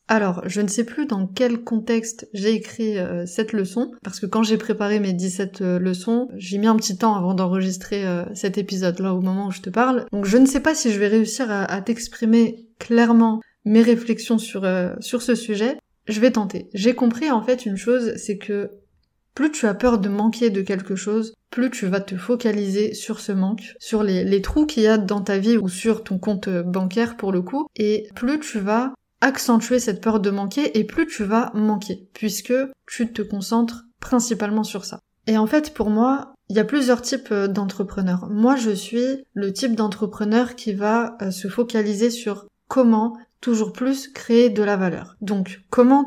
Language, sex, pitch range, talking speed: French, female, 200-235 Hz, 200 wpm